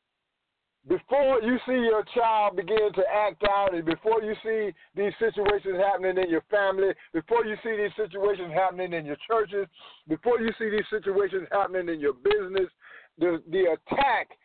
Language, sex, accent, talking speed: English, male, American, 165 wpm